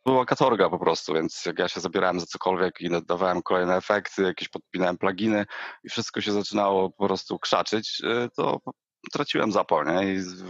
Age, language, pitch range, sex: 40-59, Polish, 90-105 Hz, male